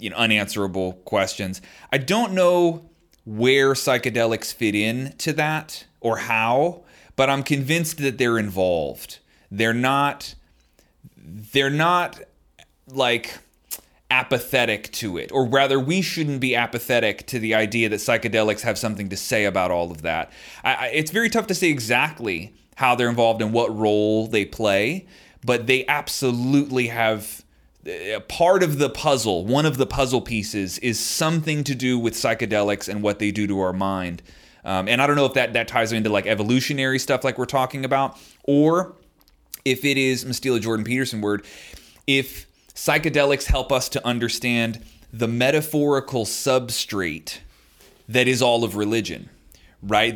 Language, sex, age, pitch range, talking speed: English, male, 30-49, 110-140 Hz, 155 wpm